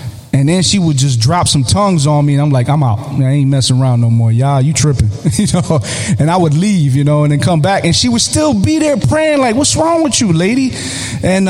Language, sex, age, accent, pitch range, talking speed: English, male, 30-49, American, 125-165 Hz, 250 wpm